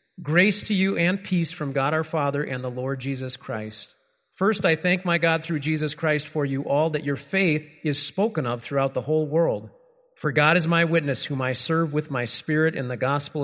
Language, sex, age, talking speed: English, male, 40-59, 220 wpm